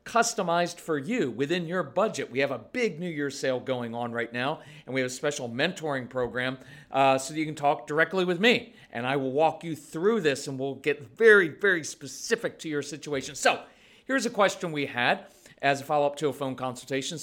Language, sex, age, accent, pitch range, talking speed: English, male, 40-59, American, 140-200 Hz, 215 wpm